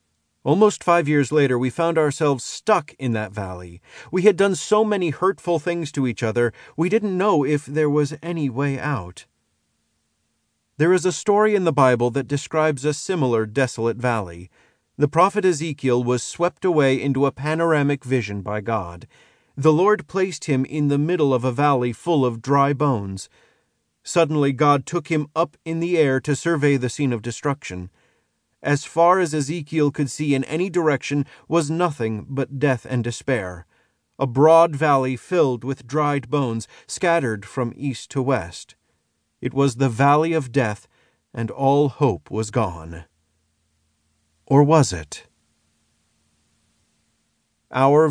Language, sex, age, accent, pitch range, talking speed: English, male, 40-59, American, 115-155 Hz, 155 wpm